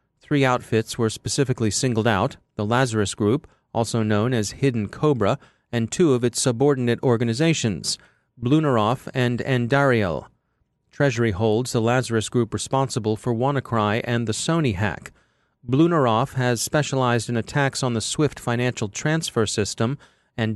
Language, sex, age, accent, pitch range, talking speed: English, male, 30-49, American, 115-140 Hz, 135 wpm